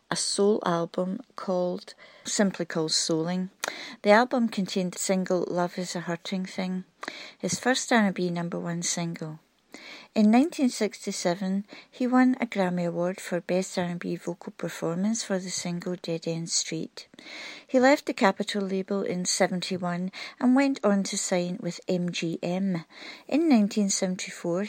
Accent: British